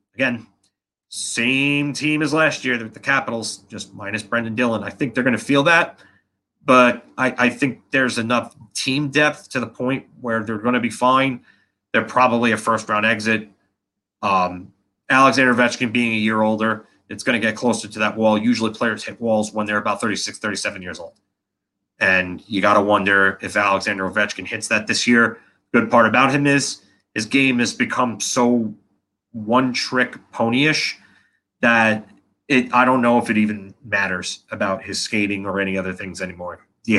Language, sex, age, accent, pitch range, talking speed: English, male, 30-49, American, 100-125 Hz, 180 wpm